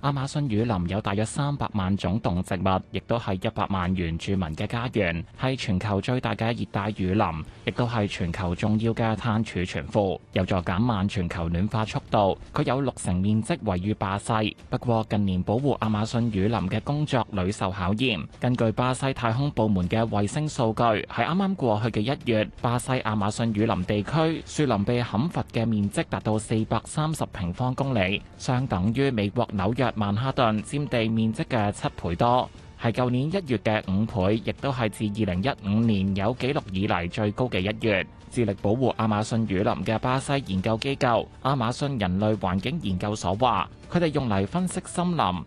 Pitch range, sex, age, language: 100-125 Hz, male, 20-39, Chinese